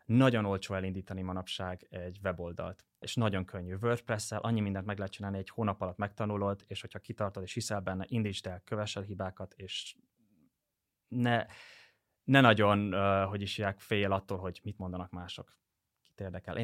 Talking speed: 160 wpm